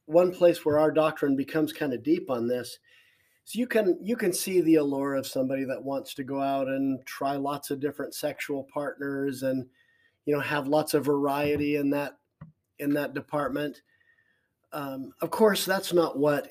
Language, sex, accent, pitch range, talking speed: English, male, American, 135-160 Hz, 185 wpm